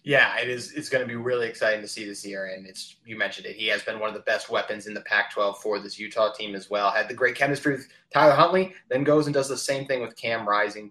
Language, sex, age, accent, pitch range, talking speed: English, male, 20-39, American, 110-140 Hz, 285 wpm